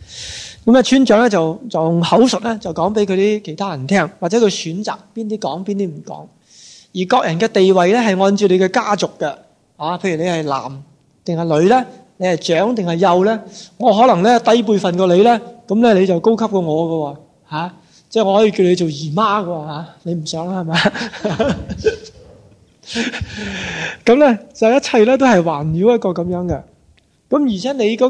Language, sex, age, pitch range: Chinese, male, 20-39, 170-220 Hz